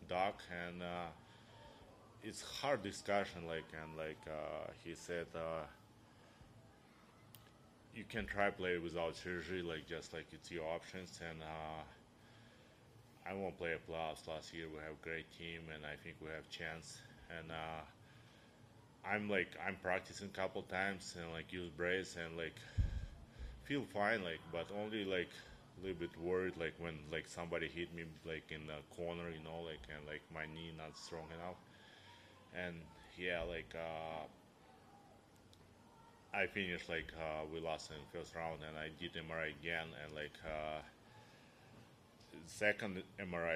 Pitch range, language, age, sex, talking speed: 80-100 Hz, English, 20-39, male, 155 wpm